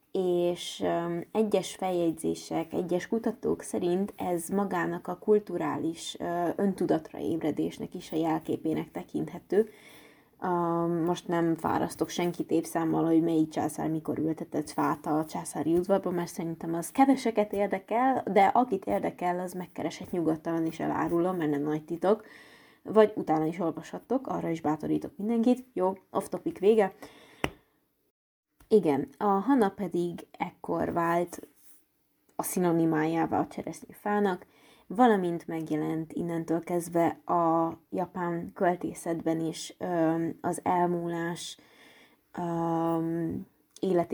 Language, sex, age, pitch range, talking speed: Hungarian, female, 20-39, 165-190 Hz, 115 wpm